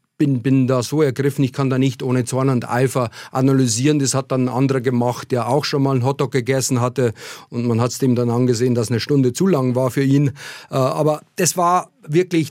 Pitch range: 135-170 Hz